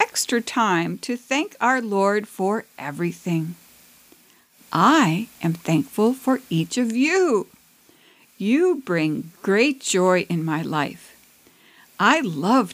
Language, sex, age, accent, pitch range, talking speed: English, female, 60-79, American, 185-265 Hz, 115 wpm